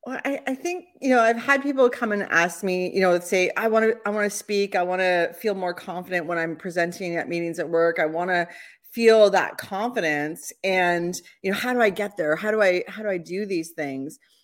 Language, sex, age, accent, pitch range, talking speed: English, female, 30-49, American, 165-220 Hz, 245 wpm